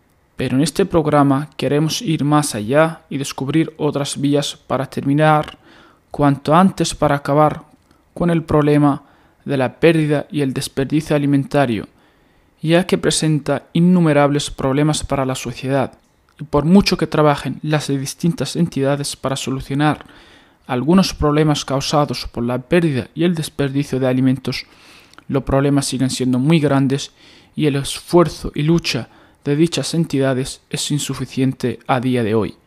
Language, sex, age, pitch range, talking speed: Italian, male, 20-39, 135-155 Hz, 140 wpm